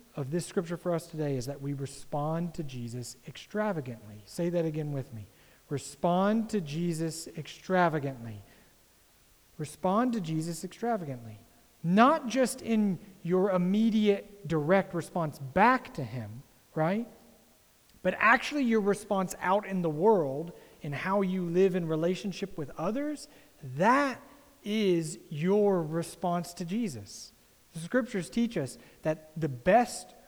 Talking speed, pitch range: 130 wpm, 150-200 Hz